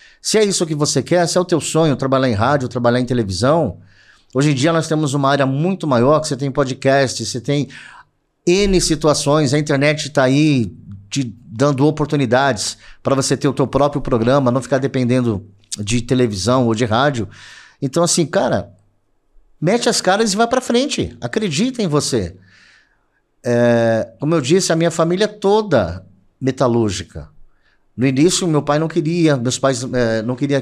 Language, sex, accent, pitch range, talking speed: Portuguese, male, Brazilian, 120-155 Hz, 175 wpm